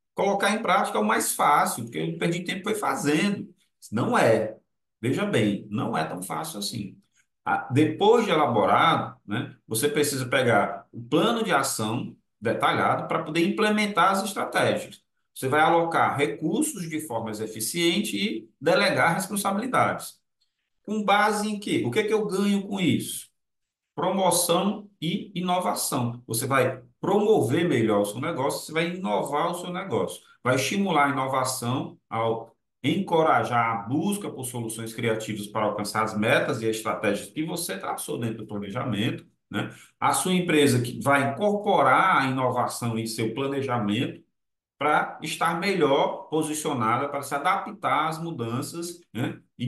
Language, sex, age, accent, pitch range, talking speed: Portuguese, male, 40-59, Brazilian, 120-180 Hz, 150 wpm